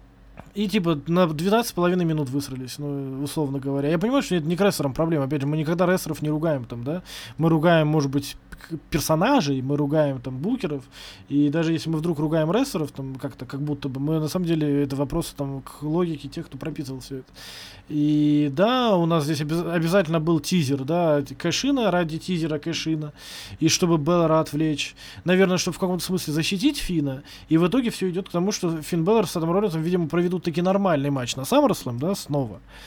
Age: 20-39